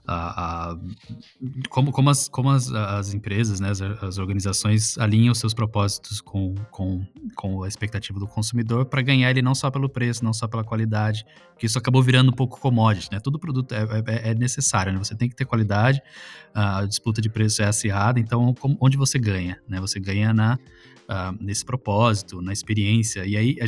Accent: Brazilian